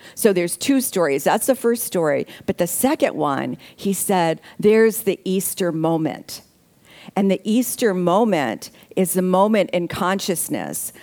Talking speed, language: 145 wpm, English